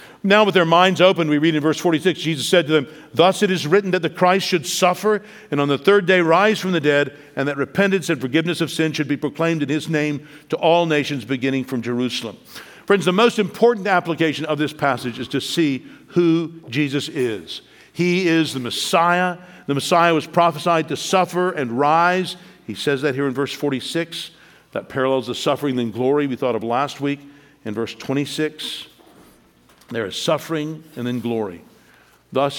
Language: English